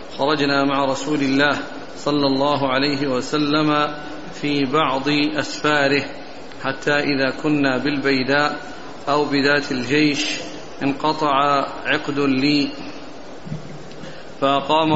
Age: 50-69